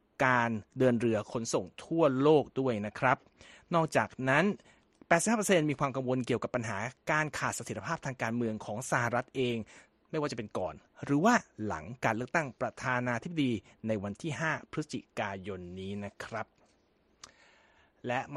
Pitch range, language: 125-160 Hz, Thai